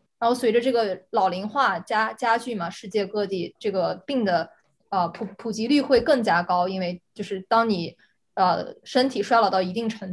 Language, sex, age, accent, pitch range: Chinese, female, 20-39, native, 195-250 Hz